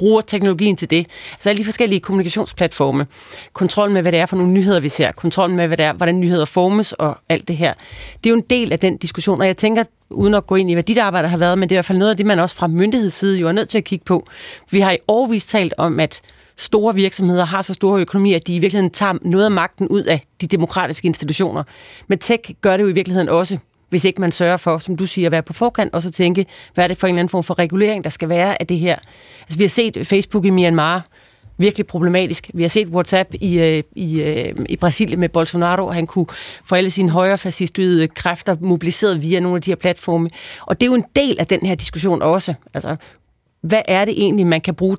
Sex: female